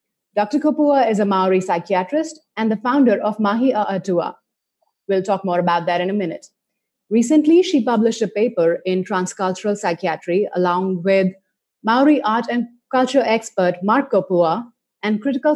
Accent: Indian